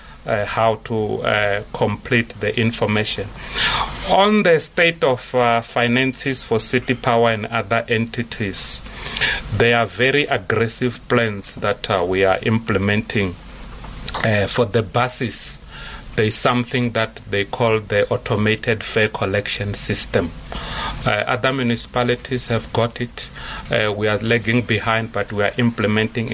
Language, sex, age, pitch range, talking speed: English, male, 40-59, 110-125 Hz, 135 wpm